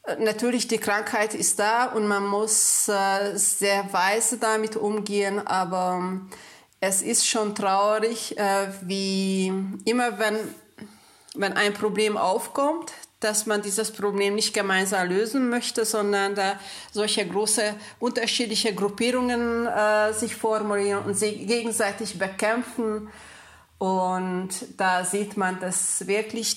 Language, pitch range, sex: German, 195-220 Hz, female